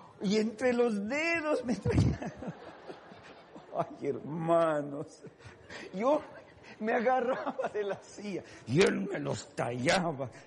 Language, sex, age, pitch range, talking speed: Spanish, male, 50-69, 120-180 Hz, 110 wpm